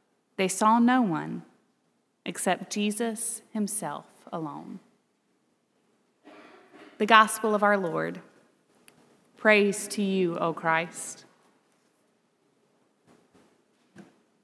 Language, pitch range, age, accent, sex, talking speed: English, 200-250 Hz, 30-49, American, female, 75 wpm